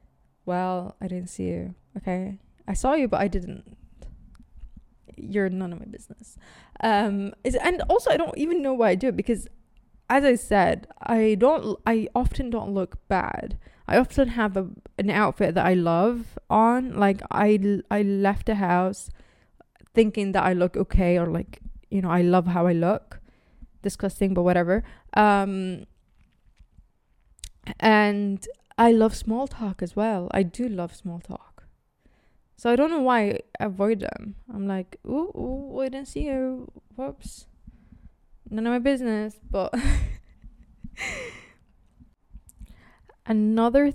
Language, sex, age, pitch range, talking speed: English, female, 20-39, 180-225 Hz, 150 wpm